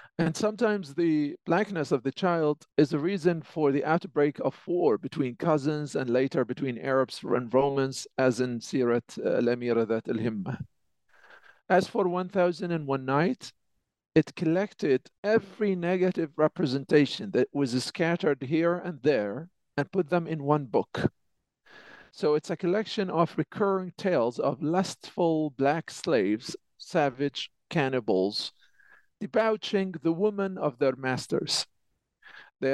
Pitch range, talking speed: 135-180 Hz, 130 wpm